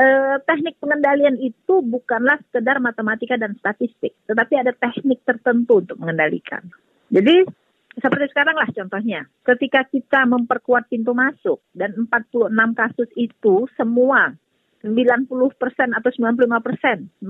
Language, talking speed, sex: Indonesian, 110 wpm, female